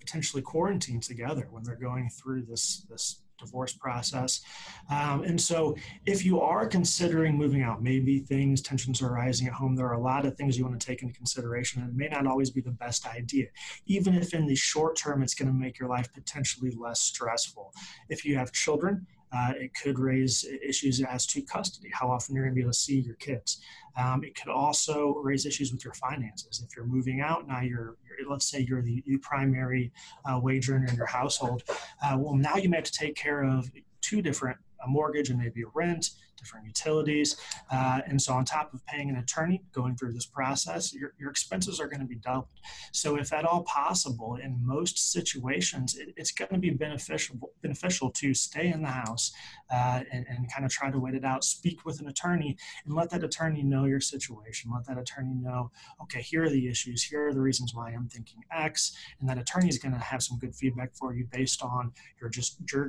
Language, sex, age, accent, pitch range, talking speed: English, male, 30-49, American, 125-150 Hz, 215 wpm